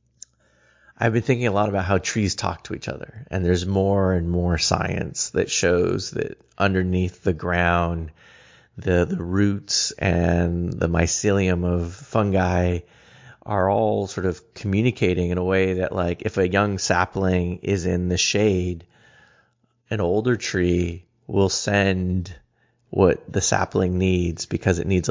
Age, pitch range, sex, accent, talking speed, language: 30-49, 90-110 Hz, male, American, 150 wpm, English